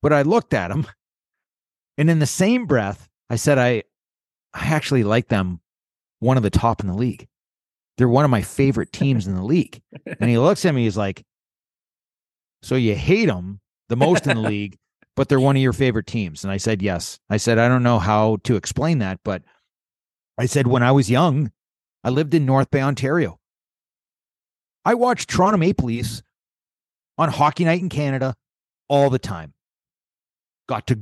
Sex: male